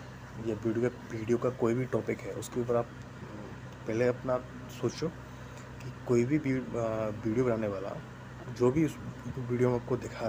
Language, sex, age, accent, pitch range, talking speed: English, male, 20-39, Indian, 115-125 Hz, 150 wpm